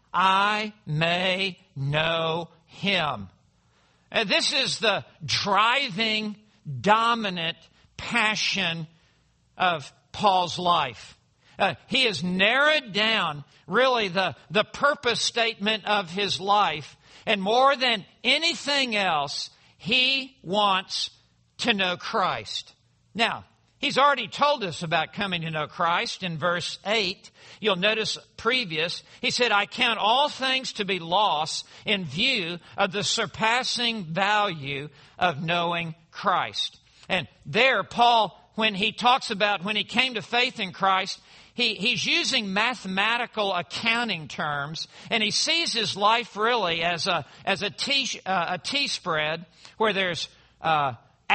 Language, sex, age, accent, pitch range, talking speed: English, male, 60-79, American, 170-230 Hz, 125 wpm